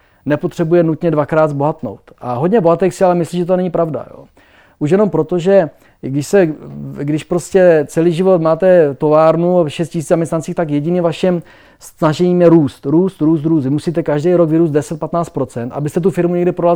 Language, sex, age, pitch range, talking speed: Czech, male, 30-49, 145-175 Hz, 175 wpm